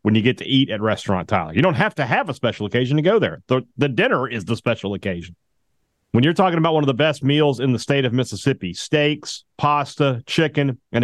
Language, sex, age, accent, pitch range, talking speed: English, male, 40-59, American, 110-140 Hz, 240 wpm